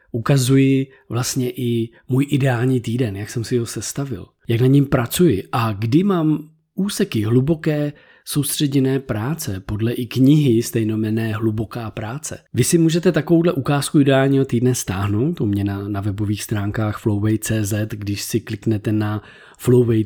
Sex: male